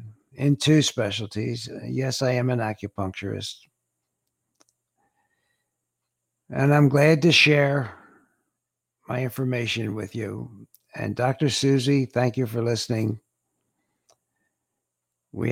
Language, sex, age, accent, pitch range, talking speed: English, male, 60-79, American, 110-140 Hz, 95 wpm